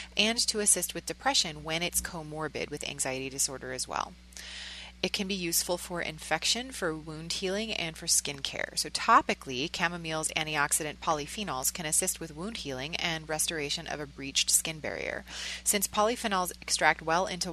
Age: 30-49